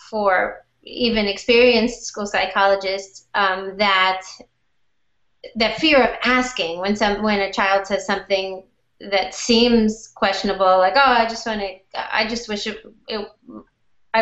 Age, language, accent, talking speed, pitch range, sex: 30-49, English, American, 130 wpm, 195-230 Hz, female